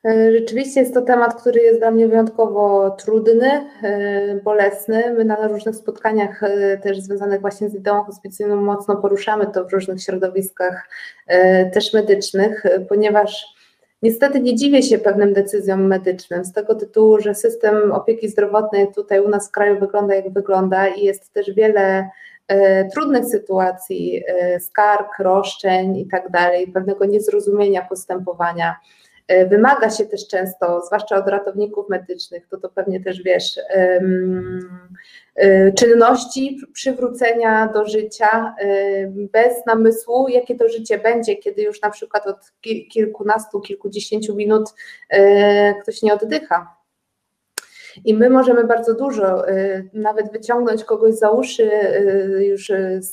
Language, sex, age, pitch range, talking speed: Polish, female, 20-39, 195-225 Hz, 125 wpm